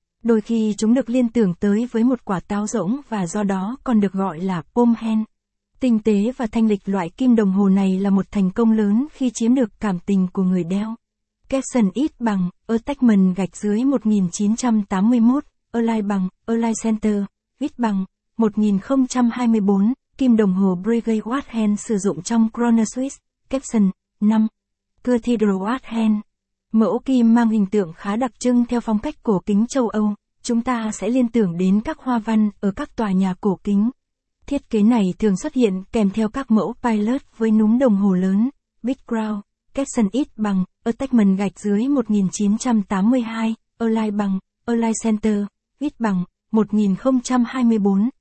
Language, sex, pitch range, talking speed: Vietnamese, female, 205-240 Hz, 165 wpm